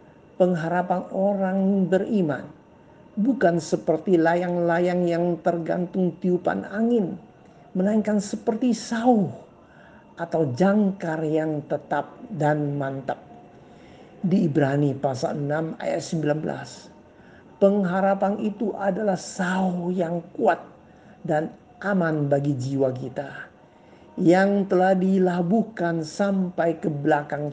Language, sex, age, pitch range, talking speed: Indonesian, male, 50-69, 155-195 Hz, 90 wpm